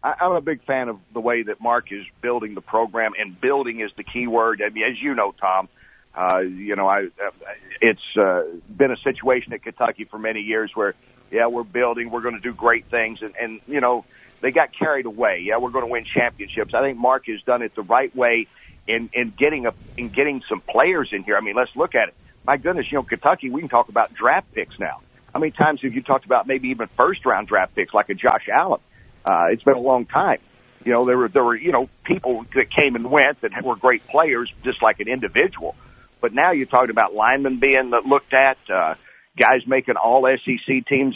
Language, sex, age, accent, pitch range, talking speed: English, male, 50-69, American, 115-130 Hz, 235 wpm